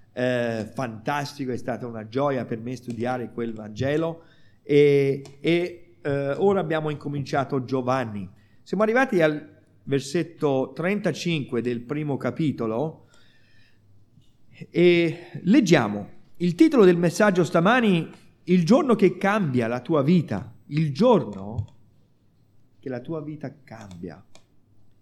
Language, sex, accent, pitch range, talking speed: Italian, male, native, 120-170 Hz, 115 wpm